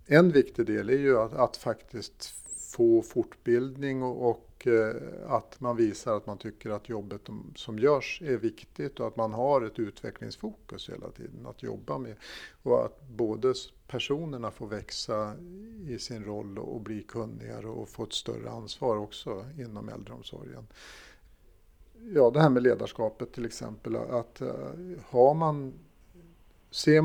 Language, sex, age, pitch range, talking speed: Swedish, male, 50-69, 105-135 Hz, 150 wpm